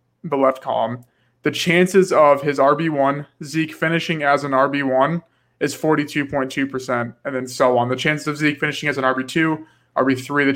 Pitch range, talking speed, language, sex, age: 130-160 Hz, 165 wpm, English, male, 20-39